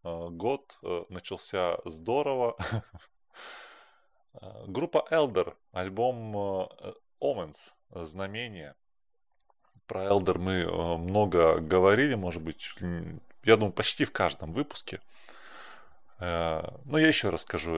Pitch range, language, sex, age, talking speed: 85-110 Hz, Russian, male, 20-39, 100 wpm